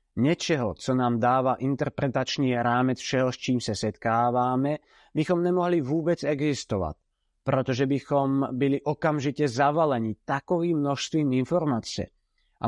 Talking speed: 115 wpm